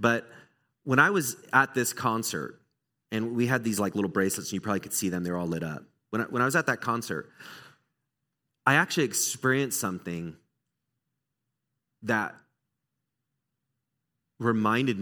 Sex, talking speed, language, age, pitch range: male, 150 wpm, English, 30-49, 115-165 Hz